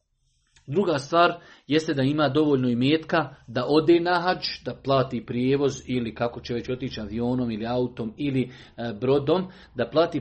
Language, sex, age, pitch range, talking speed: Croatian, male, 40-59, 130-180 Hz, 155 wpm